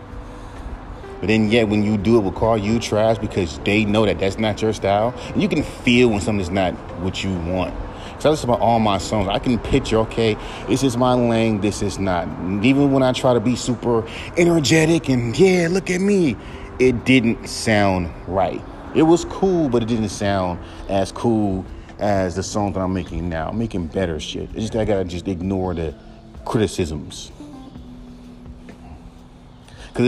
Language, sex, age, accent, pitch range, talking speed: English, male, 30-49, American, 95-120 Hz, 190 wpm